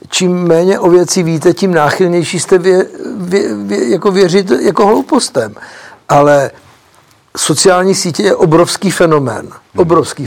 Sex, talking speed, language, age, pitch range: male, 130 wpm, Czech, 60-79, 145-170 Hz